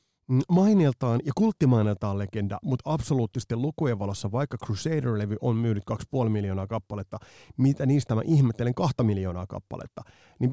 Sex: male